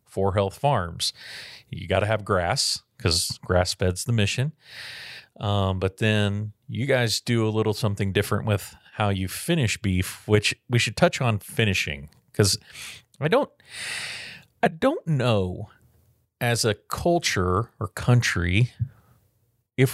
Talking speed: 140 wpm